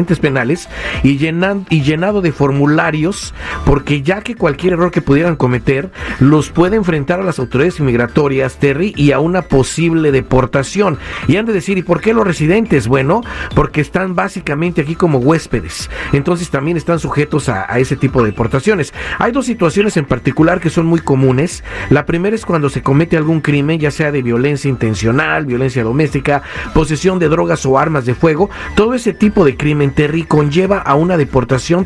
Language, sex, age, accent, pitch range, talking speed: Spanish, male, 50-69, Mexican, 140-175 Hz, 180 wpm